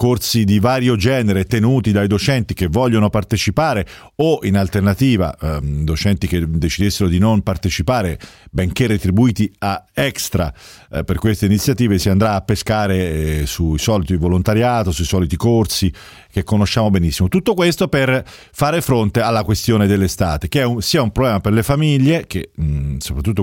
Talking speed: 160 wpm